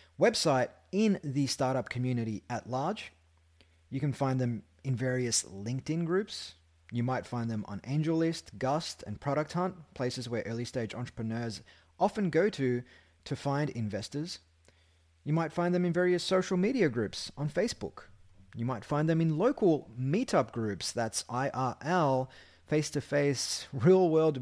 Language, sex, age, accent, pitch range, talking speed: English, male, 30-49, Australian, 115-165 Hz, 145 wpm